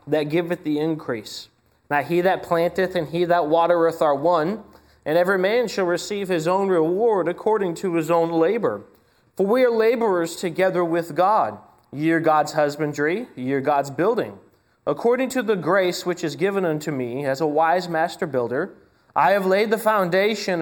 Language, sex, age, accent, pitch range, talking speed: English, male, 30-49, American, 145-185 Hz, 180 wpm